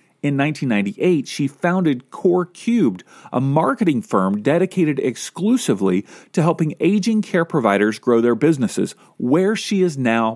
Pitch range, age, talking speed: 125-180 Hz, 40-59, 135 wpm